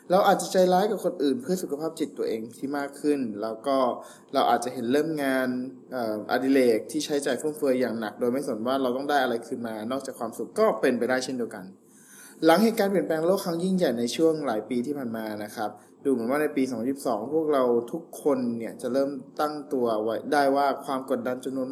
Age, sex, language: 20-39, male, Thai